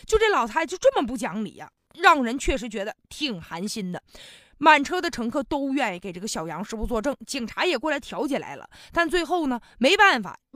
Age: 20-39